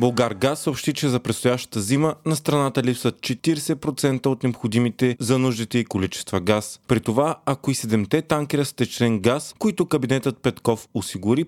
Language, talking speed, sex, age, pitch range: Bulgarian, 155 wpm, male, 30-49, 110-135 Hz